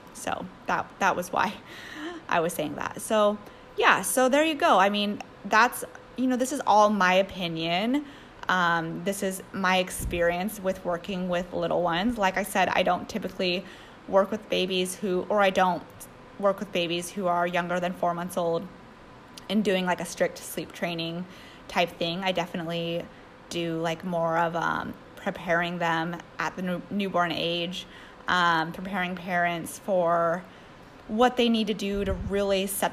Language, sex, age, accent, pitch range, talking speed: English, female, 20-39, American, 175-200 Hz, 170 wpm